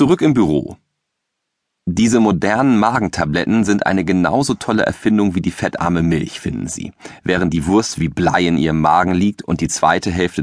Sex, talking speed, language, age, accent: male, 175 wpm, German, 40-59, German